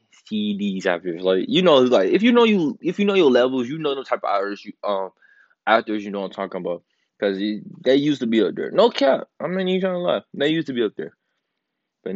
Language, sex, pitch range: English, male, 100-145 Hz